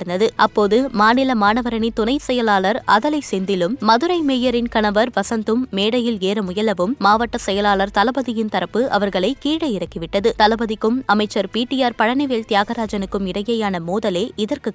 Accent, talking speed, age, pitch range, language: native, 115 wpm, 20-39, 200-255 Hz, Tamil